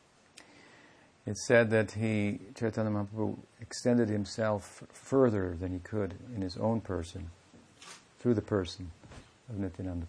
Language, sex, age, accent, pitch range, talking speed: English, male, 60-79, American, 95-115 Hz, 125 wpm